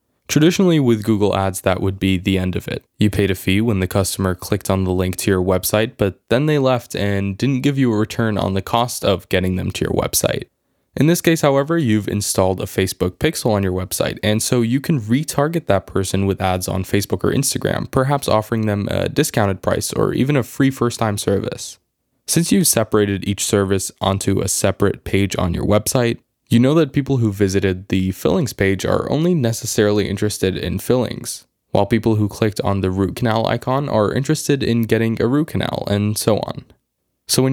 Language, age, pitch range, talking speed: English, 20-39, 95-120 Hz, 205 wpm